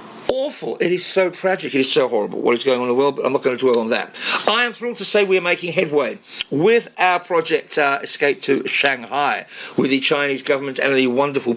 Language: English